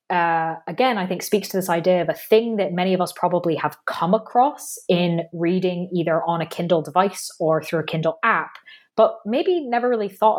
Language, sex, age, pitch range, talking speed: English, female, 20-39, 165-215 Hz, 210 wpm